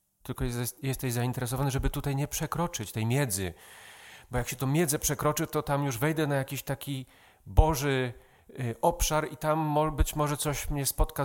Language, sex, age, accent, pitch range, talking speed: Polish, male, 40-59, native, 105-150 Hz, 165 wpm